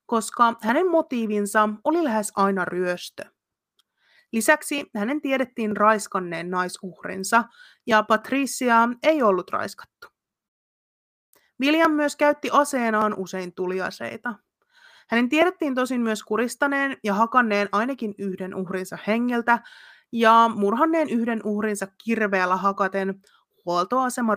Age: 30-49